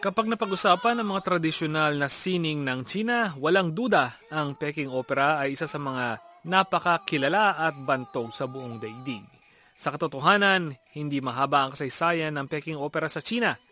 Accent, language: native, Filipino